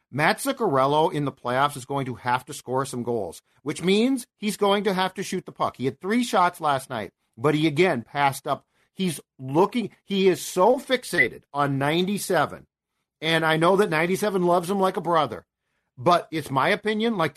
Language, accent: English, American